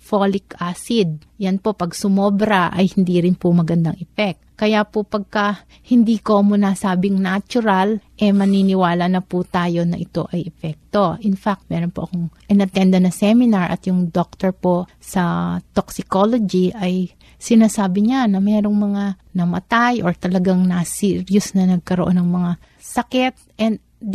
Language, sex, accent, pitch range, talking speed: Filipino, female, native, 175-210 Hz, 150 wpm